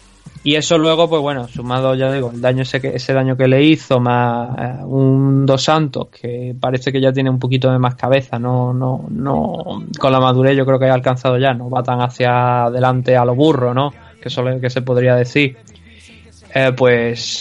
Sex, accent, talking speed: male, Spanish, 215 wpm